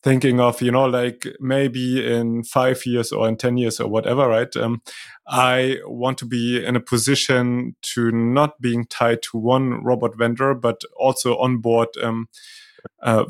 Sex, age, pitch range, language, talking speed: male, 30-49, 115-135 Hz, German, 165 wpm